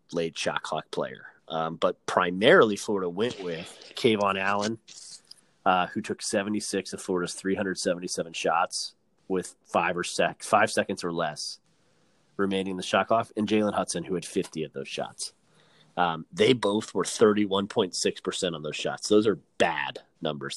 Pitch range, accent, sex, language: 90-115 Hz, American, male, English